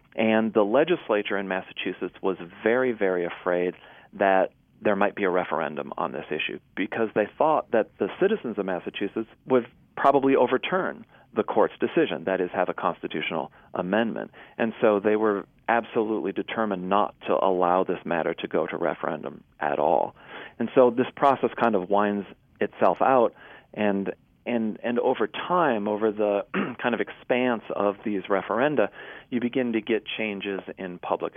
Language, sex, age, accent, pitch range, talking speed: English, male, 40-59, American, 95-115 Hz, 160 wpm